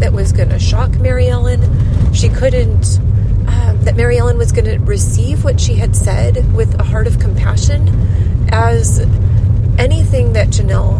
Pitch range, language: 100-120 Hz, English